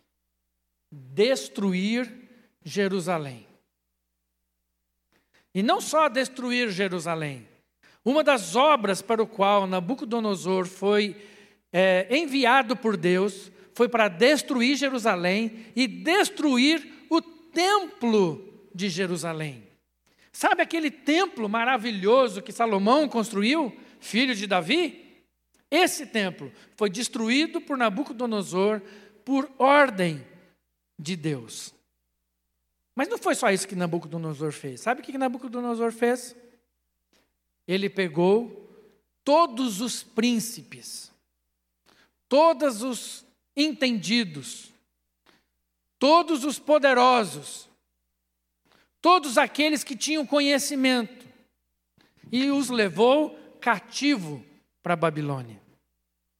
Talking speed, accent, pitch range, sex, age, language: 90 wpm, Brazilian, 160-265 Hz, male, 60-79, Portuguese